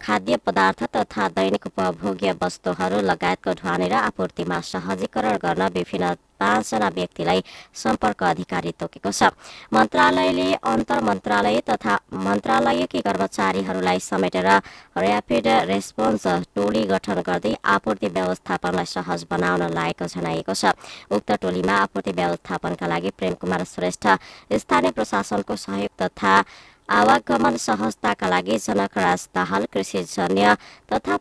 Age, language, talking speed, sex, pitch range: 20-39, English, 100 wpm, male, 90-100 Hz